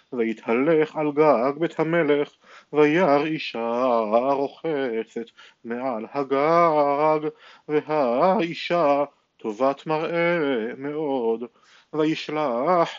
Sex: male